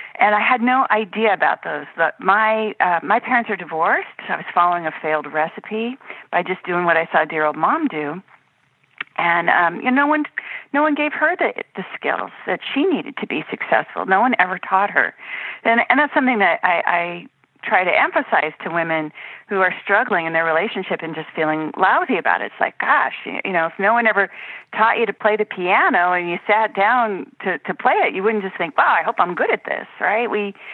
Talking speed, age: 225 wpm, 40-59